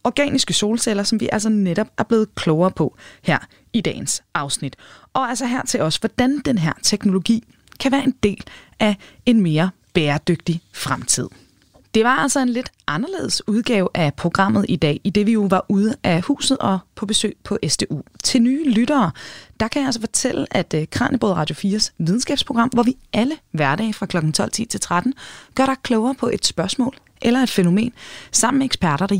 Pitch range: 175-250 Hz